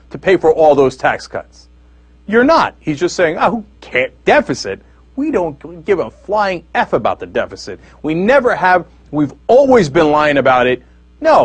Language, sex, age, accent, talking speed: English, male, 40-59, American, 185 wpm